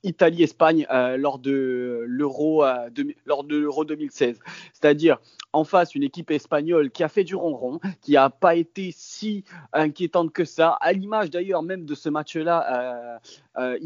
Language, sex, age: French, male, 30-49